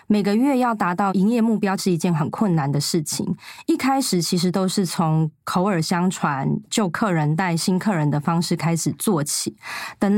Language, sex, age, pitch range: Chinese, female, 20-39, 170-210 Hz